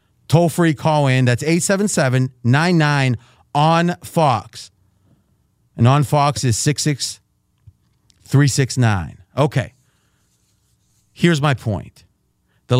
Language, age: English, 40-59